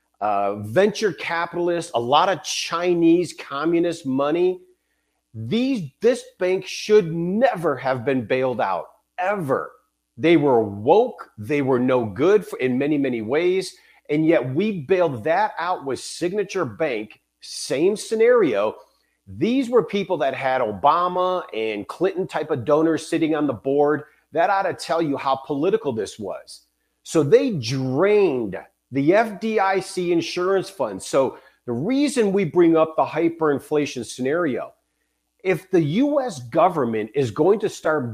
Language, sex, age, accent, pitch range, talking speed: English, male, 40-59, American, 135-210 Hz, 140 wpm